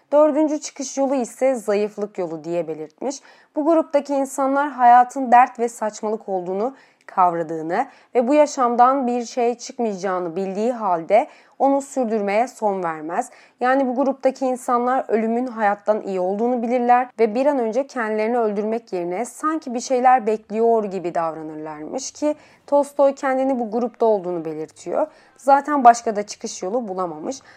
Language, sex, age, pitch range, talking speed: Turkish, female, 30-49, 205-265 Hz, 140 wpm